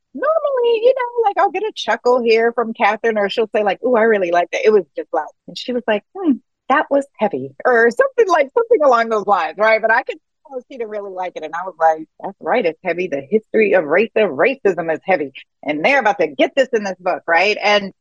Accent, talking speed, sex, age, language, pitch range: American, 250 wpm, female, 30-49, English, 175-250 Hz